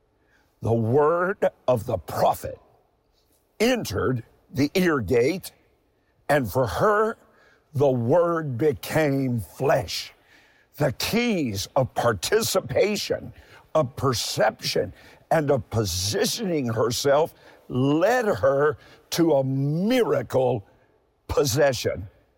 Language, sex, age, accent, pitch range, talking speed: English, male, 50-69, American, 120-165 Hz, 85 wpm